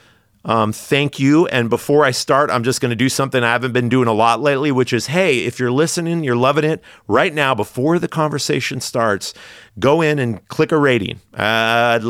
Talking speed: 215 wpm